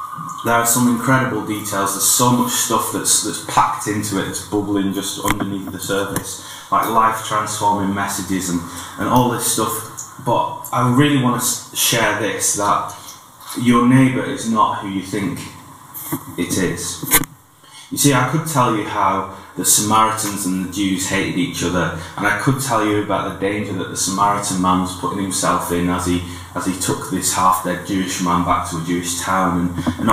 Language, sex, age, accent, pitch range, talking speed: English, male, 20-39, British, 95-120 Hz, 185 wpm